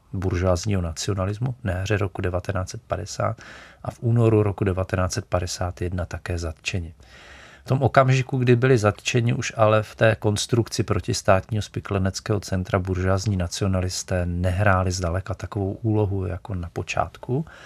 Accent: native